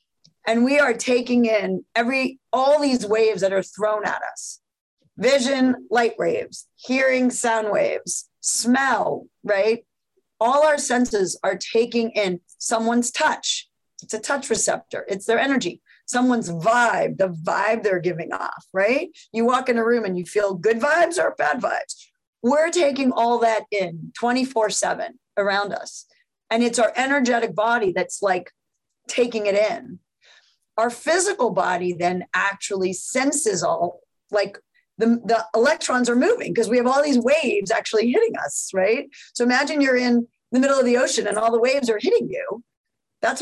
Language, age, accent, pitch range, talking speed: English, 40-59, American, 210-265 Hz, 160 wpm